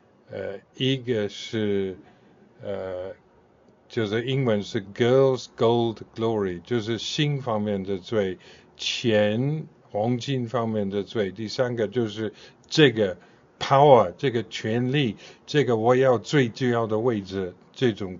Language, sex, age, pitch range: Chinese, male, 50-69, 105-130 Hz